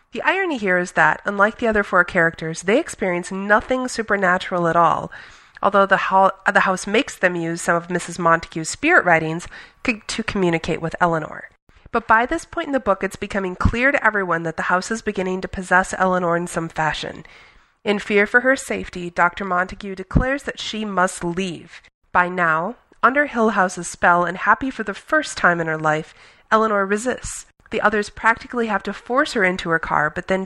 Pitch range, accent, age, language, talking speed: 175-210 Hz, American, 30-49, English, 190 wpm